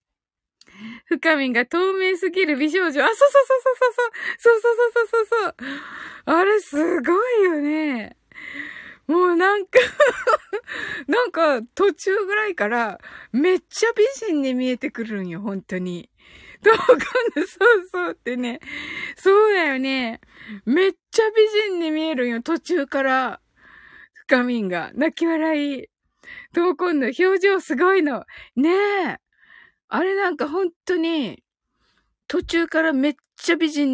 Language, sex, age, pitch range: Japanese, female, 20-39, 285-420 Hz